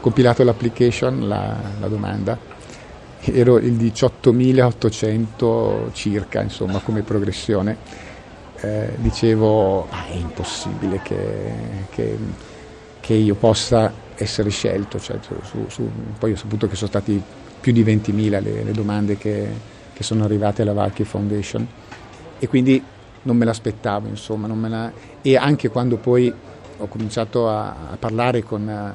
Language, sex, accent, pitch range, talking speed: Italian, male, native, 105-120 Hz, 120 wpm